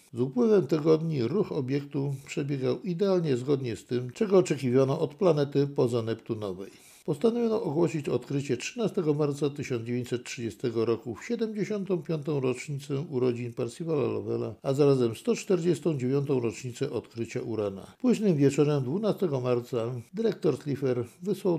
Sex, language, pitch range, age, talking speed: male, Polish, 115-155 Hz, 60-79, 115 wpm